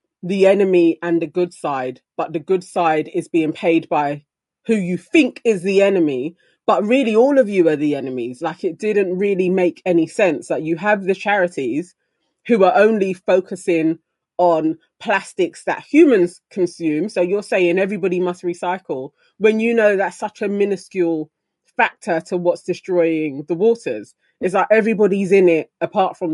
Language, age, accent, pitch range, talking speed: English, 20-39, British, 155-190 Hz, 175 wpm